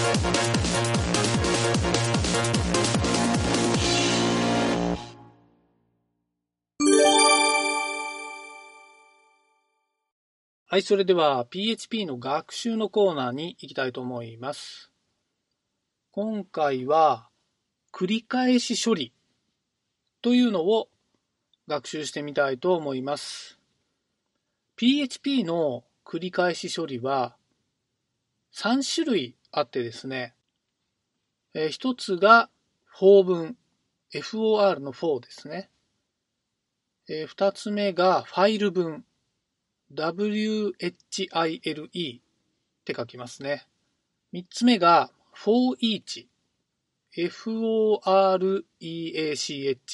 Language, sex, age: Japanese, male, 40-59